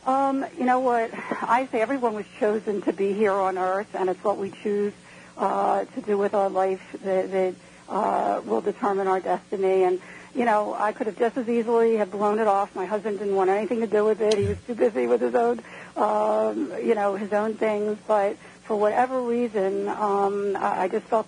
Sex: female